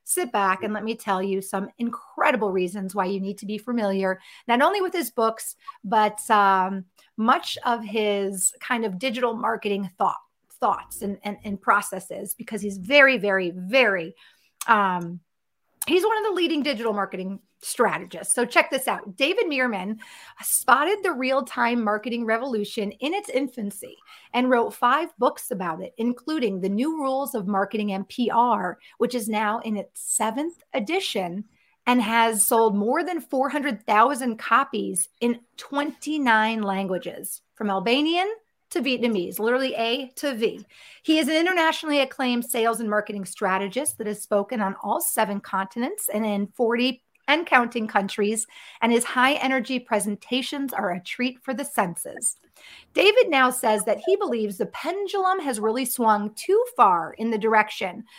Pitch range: 205-275 Hz